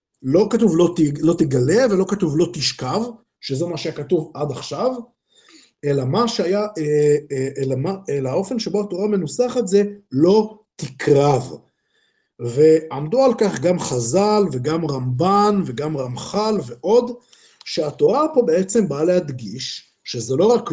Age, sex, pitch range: 50-69, male, 145-210 Hz